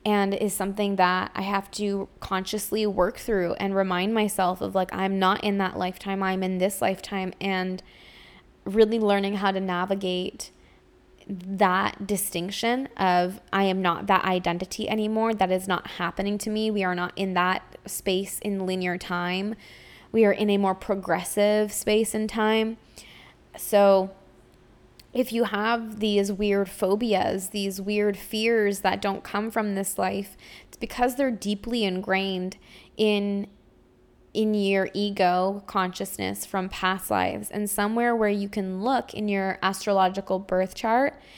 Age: 10-29